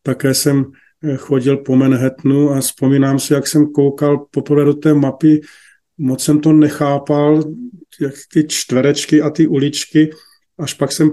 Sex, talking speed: male, 150 wpm